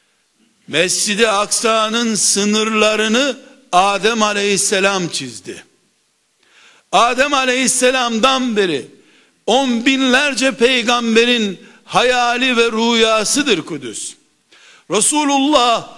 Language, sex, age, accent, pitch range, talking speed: Turkish, male, 60-79, native, 215-255 Hz, 65 wpm